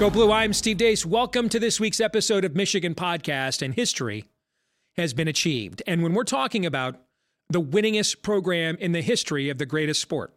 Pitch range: 145-185 Hz